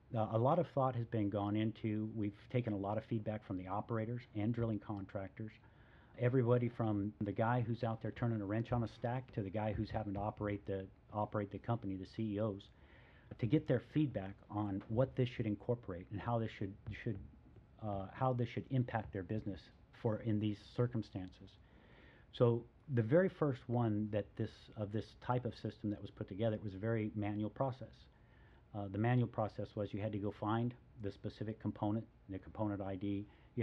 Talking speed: 200 wpm